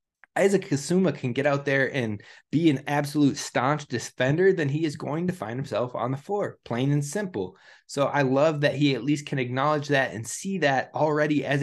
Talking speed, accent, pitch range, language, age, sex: 205 wpm, American, 125-155 Hz, English, 20-39, male